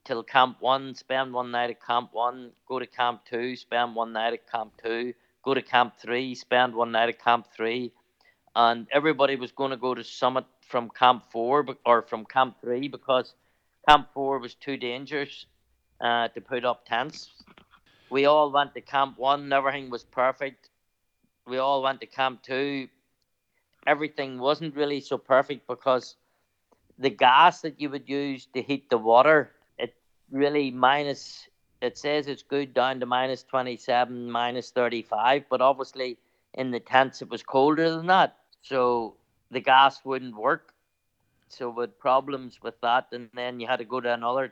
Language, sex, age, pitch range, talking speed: English, male, 50-69, 120-135 Hz, 170 wpm